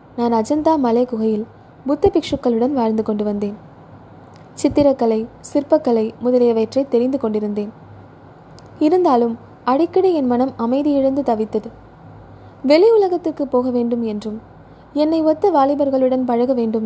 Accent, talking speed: native, 105 wpm